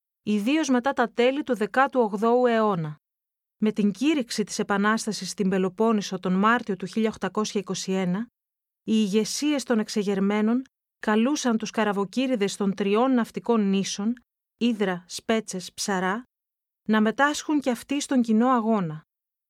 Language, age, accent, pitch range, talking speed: Greek, 30-49, native, 205-250 Hz, 120 wpm